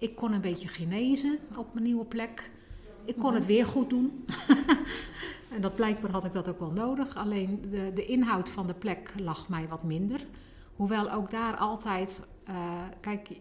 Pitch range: 180-220 Hz